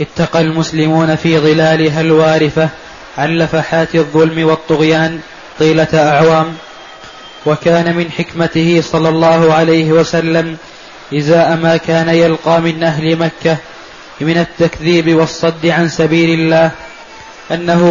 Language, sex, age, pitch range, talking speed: Arabic, male, 20-39, 160-170 Hz, 105 wpm